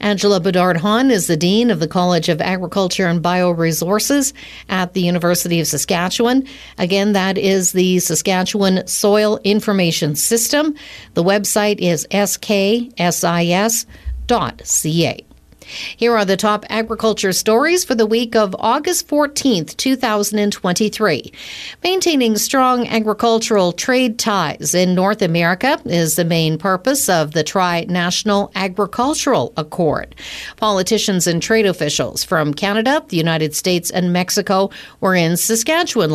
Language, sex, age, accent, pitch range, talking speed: English, female, 50-69, American, 175-225 Hz, 125 wpm